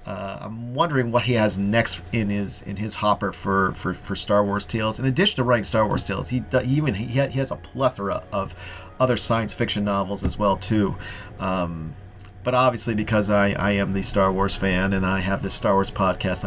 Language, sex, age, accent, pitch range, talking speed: English, male, 40-59, American, 95-125 Hz, 210 wpm